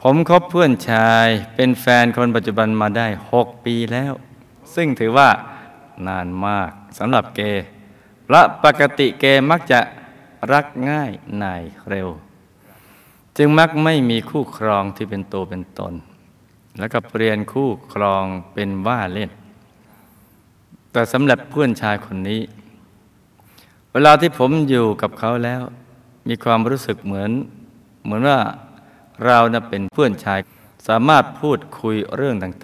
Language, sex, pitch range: Thai, male, 105-130 Hz